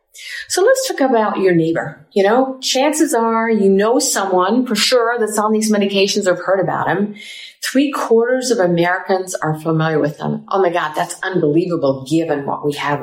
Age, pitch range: 50-69, 165-230 Hz